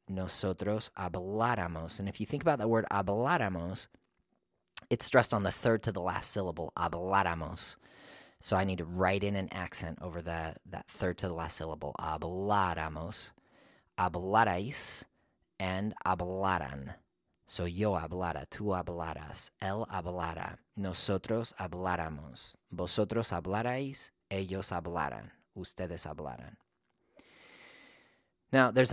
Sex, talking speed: male, 115 wpm